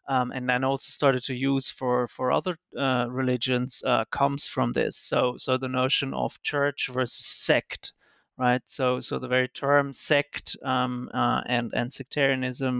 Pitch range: 125-135 Hz